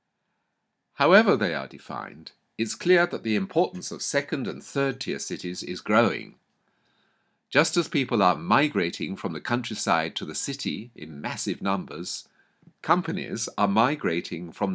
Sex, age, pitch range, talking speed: male, 50-69, 100-140 Hz, 140 wpm